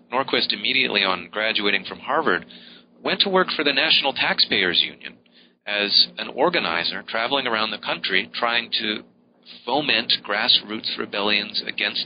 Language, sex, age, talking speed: English, male, 40-59, 135 wpm